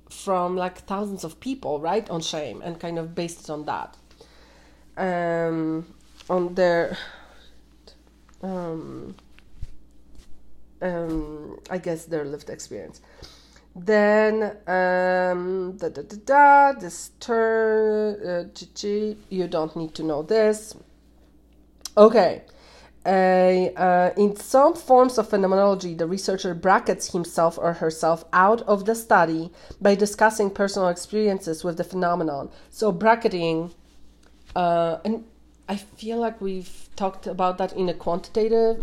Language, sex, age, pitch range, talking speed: English, female, 30-49, 170-205 Hz, 110 wpm